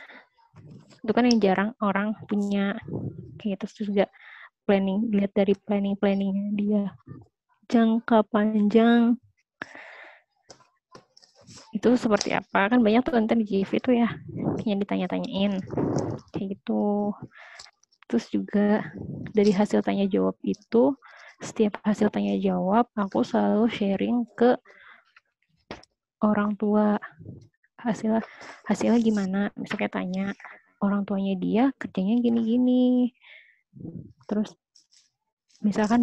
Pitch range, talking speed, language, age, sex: 195-225 Hz, 100 wpm, Indonesian, 20-39, female